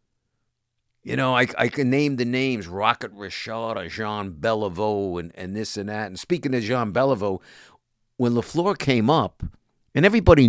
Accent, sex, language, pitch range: American, male, English, 110-135 Hz